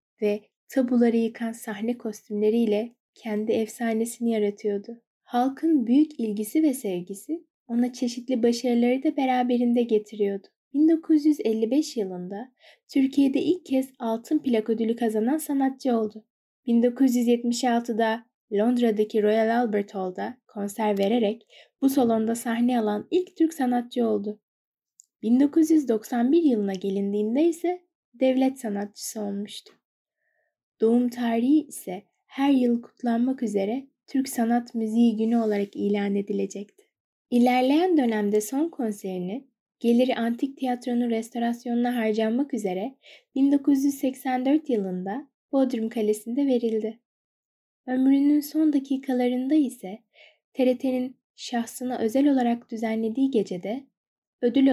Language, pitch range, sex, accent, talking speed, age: Turkish, 220-270 Hz, female, native, 100 wpm, 10-29